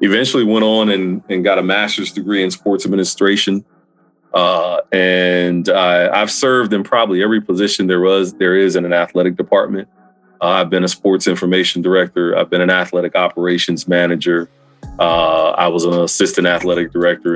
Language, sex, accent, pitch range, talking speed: English, male, American, 85-95 Hz, 170 wpm